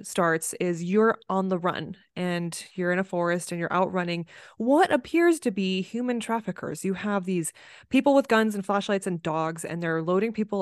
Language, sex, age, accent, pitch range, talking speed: English, female, 20-39, American, 175-210 Hz, 200 wpm